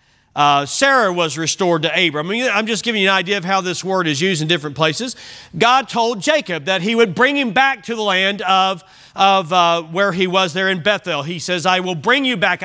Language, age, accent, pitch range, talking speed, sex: English, 40-59, American, 180-250 Hz, 240 wpm, male